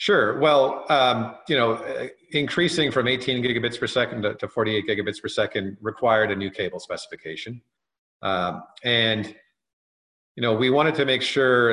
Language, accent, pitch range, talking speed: English, American, 100-120 Hz, 155 wpm